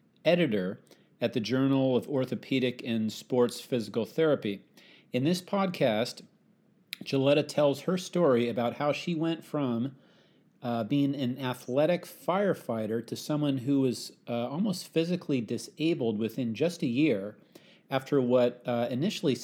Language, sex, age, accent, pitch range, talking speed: English, male, 40-59, American, 120-150 Hz, 135 wpm